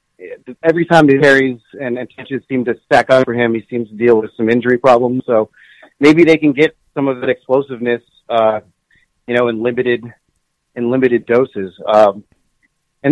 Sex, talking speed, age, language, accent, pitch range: male, 180 wpm, 30-49, English, American, 115-140 Hz